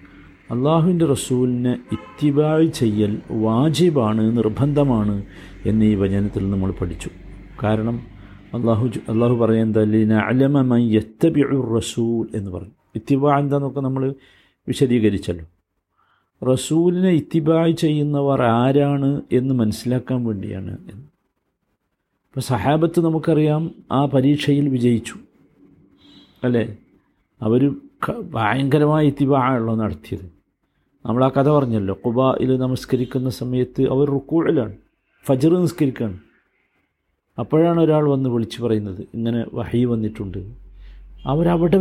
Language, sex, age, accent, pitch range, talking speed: Malayalam, male, 50-69, native, 110-145 Hz, 90 wpm